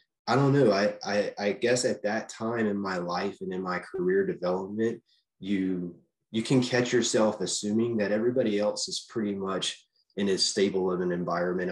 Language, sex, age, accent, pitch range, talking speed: English, male, 30-49, American, 95-125 Hz, 185 wpm